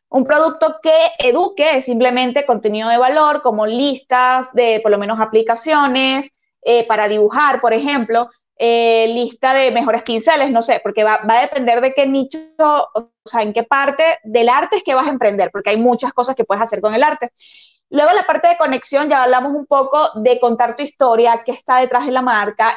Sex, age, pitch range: female, 20-39, 235-300 Hz